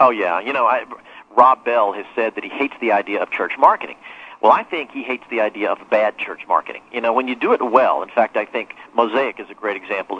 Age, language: 50-69, English